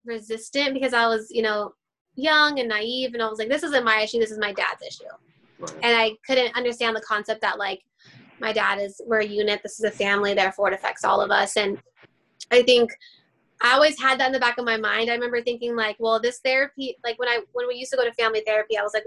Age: 10-29